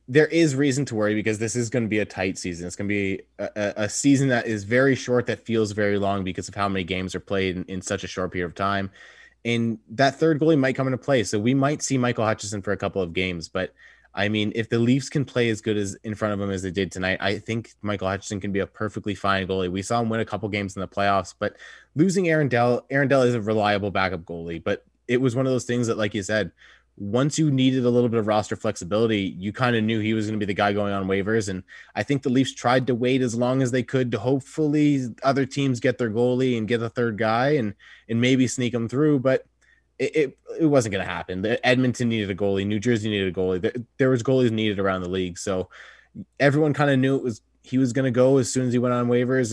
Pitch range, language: 100-130 Hz, English